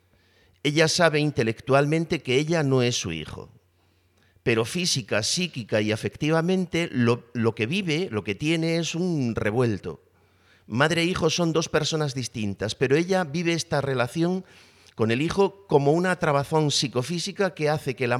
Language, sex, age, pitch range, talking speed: Spanish, male, 50-69, 110-155 Hz, 155 wpm